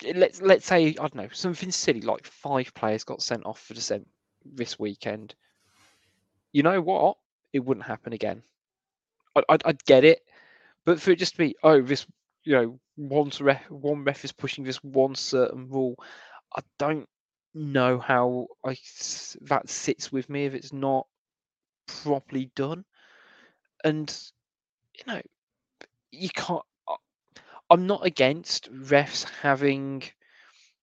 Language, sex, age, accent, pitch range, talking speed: English, male, 20-39, British, 130-155 Hz, 145 wpm